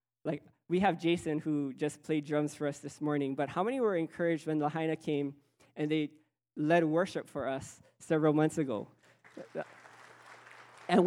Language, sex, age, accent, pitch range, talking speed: English, male, 20-39, American, 150-220 Hz, 165 wpm